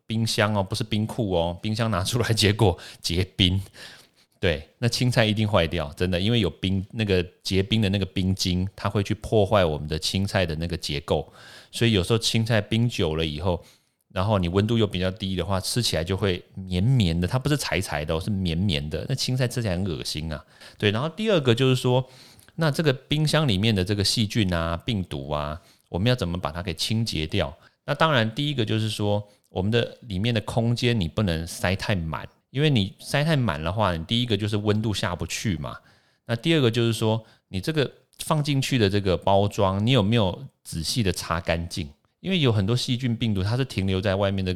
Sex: male